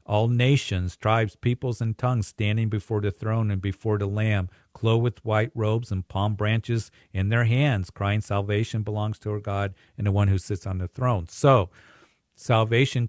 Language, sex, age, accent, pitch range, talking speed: English, male, 50-69, American, 95-110 Hz, 185 wpm